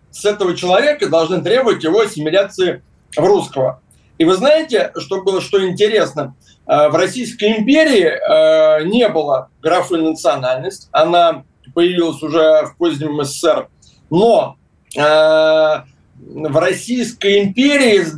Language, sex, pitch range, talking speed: Russian, male, 160-210 Hz, 110 wpm